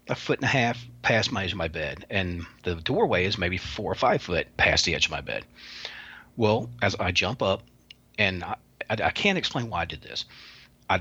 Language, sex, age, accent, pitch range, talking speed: English, male, 40-59, American, 85-115 Hz, 230 wpm